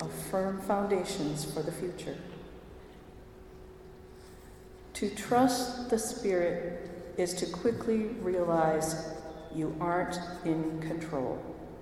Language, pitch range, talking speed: English, 155-220 Hz, 85 wpm